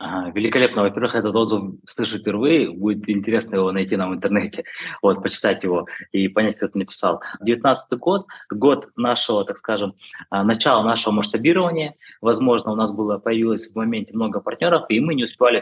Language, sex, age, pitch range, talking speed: Russian, male, 20-39, 95-115 Hz, 165 wpm